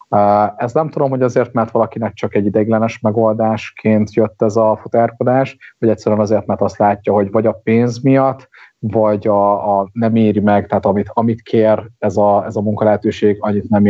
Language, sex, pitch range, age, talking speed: Hungarian, male, 100-115 Hz, 30-49, 185 wpm